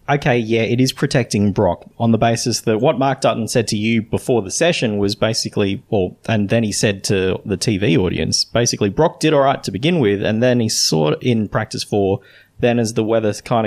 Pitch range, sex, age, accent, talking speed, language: 100-130 Hz, male, 20-39, Australian, 225 wpm, English